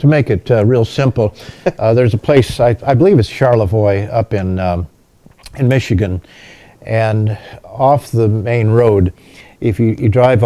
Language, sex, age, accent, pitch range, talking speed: English, male, 50-69, American, 105-135 Hz, 165 wpm